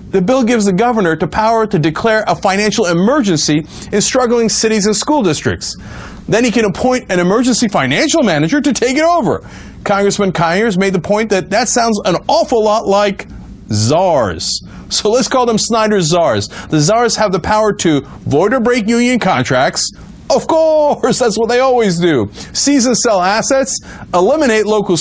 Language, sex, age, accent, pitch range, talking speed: English, male, 40-59, American, 180-250 Hz, 175 wpm